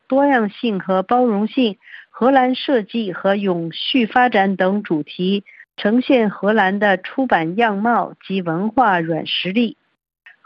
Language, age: Chinese, 50-69